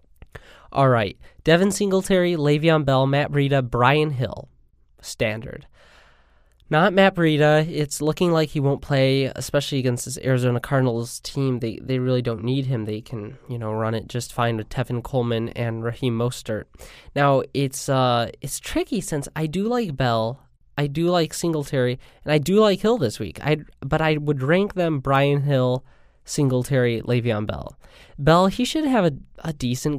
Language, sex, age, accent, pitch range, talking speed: English, male, 20-39, American, 120-155 Hz, 170 wpm